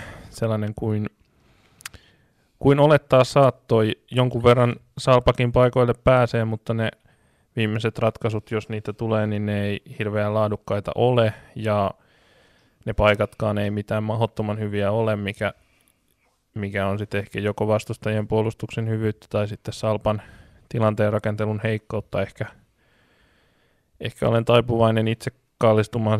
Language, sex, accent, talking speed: Finnish, male, native, 120 wpm